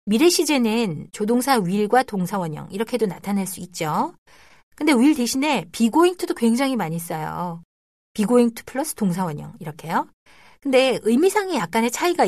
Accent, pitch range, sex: native, 180-265 Hz, female